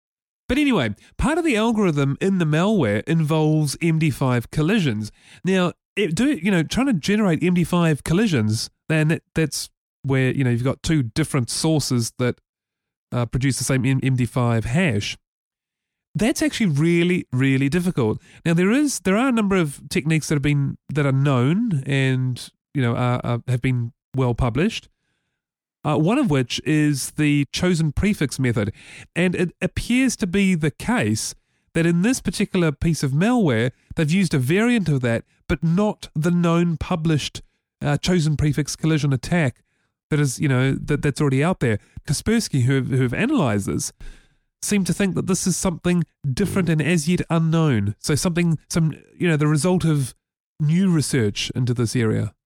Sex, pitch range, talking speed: male, 130-180 Hz, 170 wpm